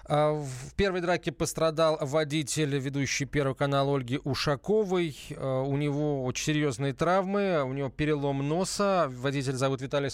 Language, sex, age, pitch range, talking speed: Russian, male, 20-39, 140-170 Hz, 130 wpm